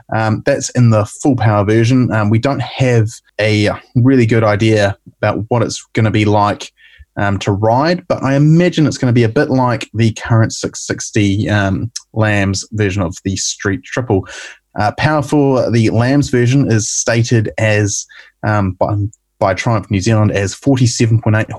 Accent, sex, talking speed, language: Australian, male, 170 wpm, English